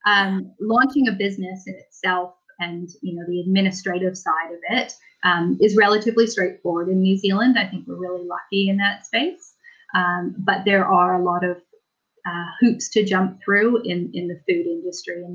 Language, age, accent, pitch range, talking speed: English, 30-49, American, 175-200 Hz, 185 wpm